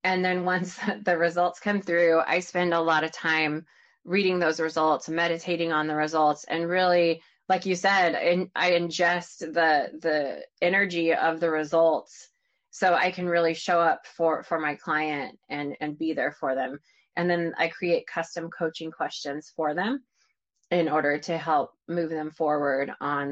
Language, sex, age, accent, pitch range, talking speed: English, female, 20-39, American, 165-195 Hz, 170 wpm